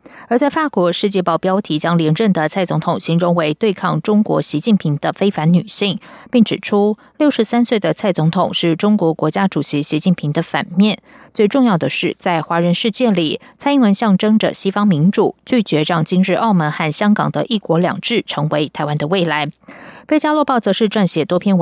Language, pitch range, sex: German, 165-215 Hz, female